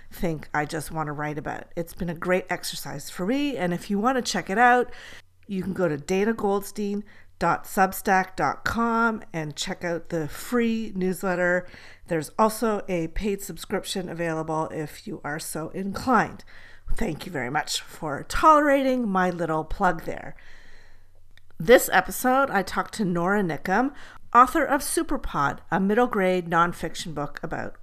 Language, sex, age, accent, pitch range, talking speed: English, female, 50-69, American, 160-220 Hz, 150 wpm